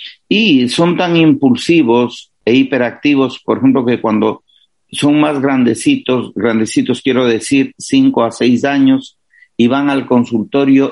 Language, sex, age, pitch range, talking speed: Spanish, male, 50-69, 120-145 Hz, 130 wpm